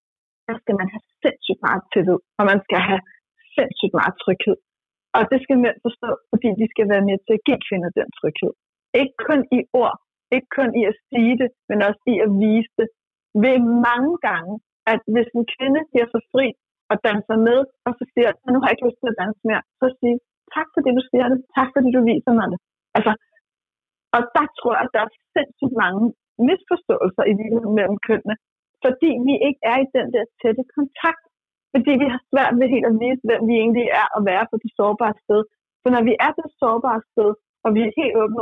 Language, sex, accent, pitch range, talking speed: Danish, female, native, 215-260 Hz, 215 wpm